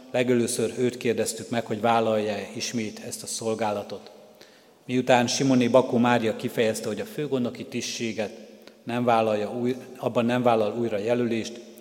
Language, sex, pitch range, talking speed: Hungarian, male, 110-125 Hz, 130 wpm